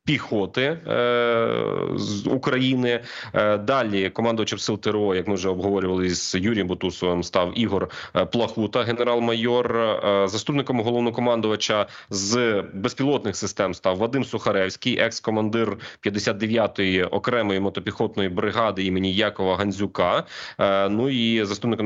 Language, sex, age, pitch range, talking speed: Ukrainian, male, 30-49, 100-115 Hz, 115 wpm